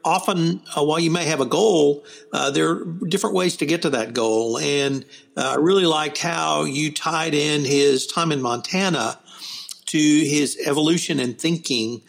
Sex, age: male, 60-79